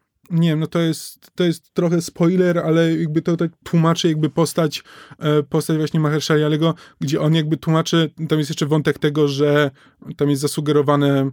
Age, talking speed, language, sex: 20-39, 175 wpm, Polish, male